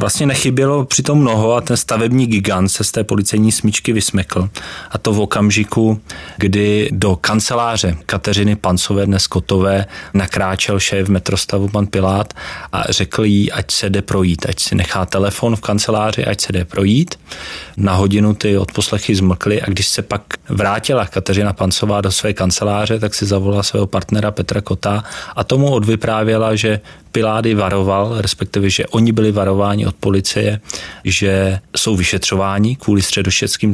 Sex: male